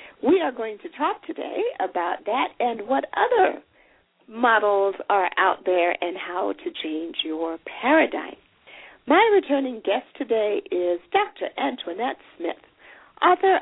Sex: female